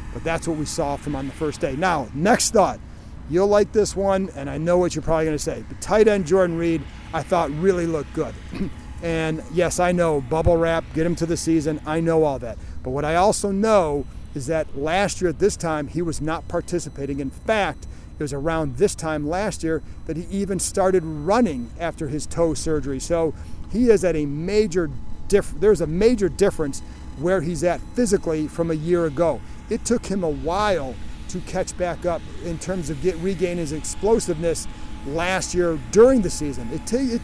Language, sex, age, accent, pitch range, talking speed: English, male, 40-59, American, 155-190 Hz, 205 wpm